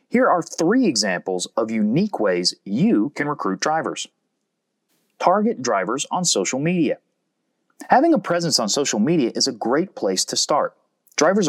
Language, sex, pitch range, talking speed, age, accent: English, male, 130-200 Hz, 150 wpm, 30-49, American